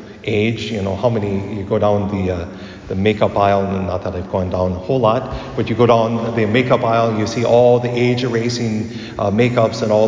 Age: 40-59